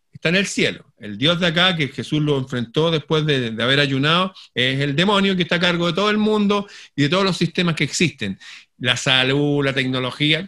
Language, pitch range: Spanish, 125-170 Hz